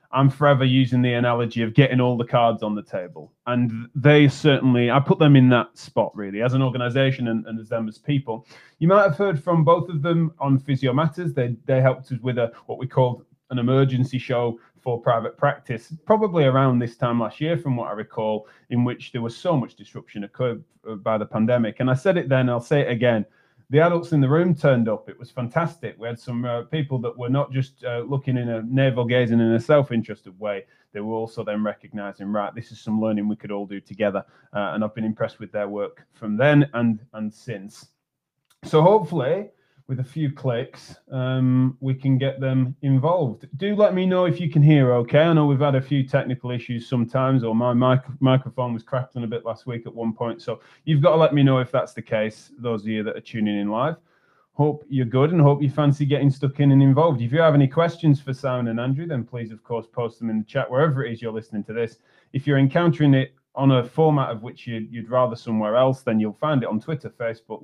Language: English